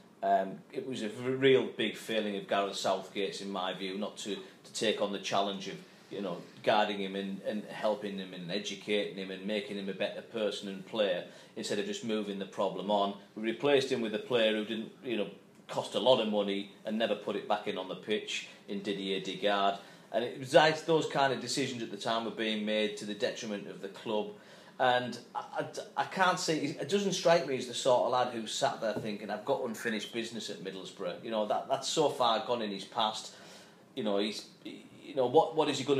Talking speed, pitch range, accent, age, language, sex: 235 wpm, 100-125 Hz, British, 40-59, English, male